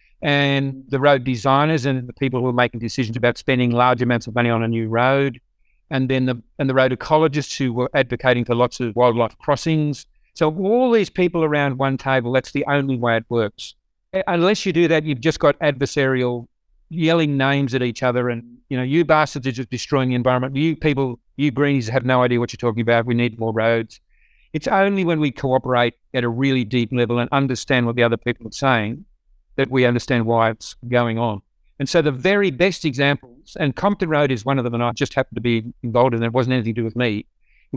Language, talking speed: English, 225 wpm